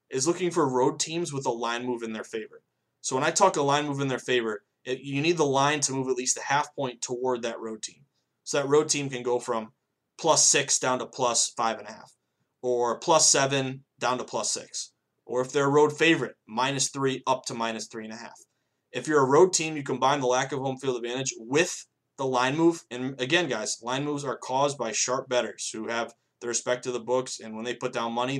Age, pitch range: 20-39, 120-145 Hz